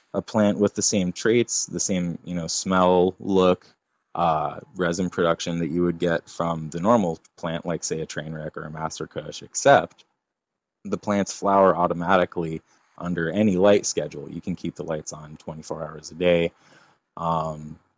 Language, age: English, 20-39